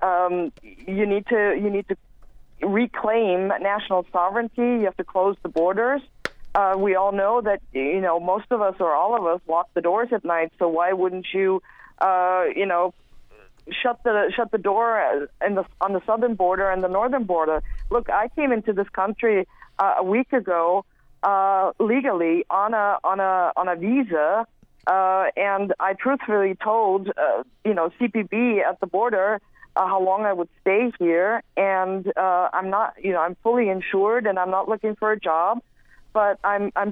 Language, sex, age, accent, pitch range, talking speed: English, female, 40-59, American, 185-220 Hz, 185 wpm